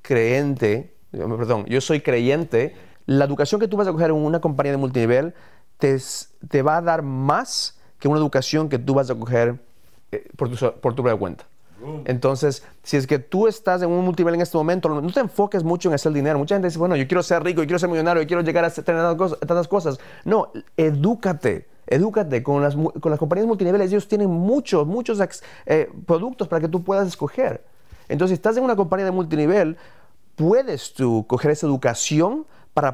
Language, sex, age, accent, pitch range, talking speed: English, male, 30-49, Mexican, 135-175 Hz, 210 wpm